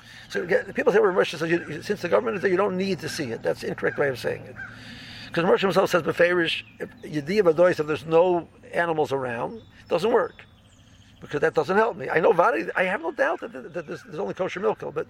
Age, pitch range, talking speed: 60-79, 125-190 Hz, 235 wpm